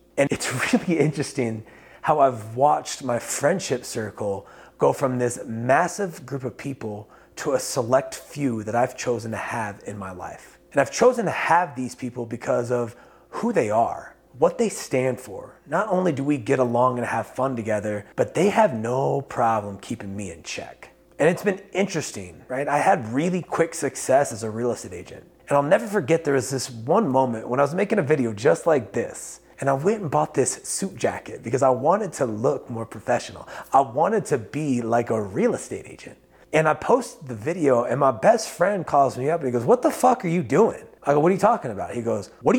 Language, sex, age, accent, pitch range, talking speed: English, male, 30-49, American, 120-170 Hz, 215 wpm